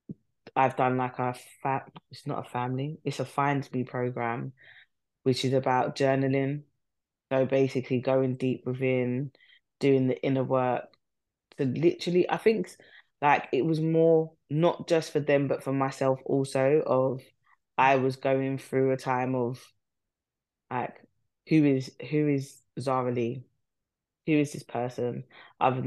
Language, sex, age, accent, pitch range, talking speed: English, female, 20-39, British, 130-140 Hz, 145 wpm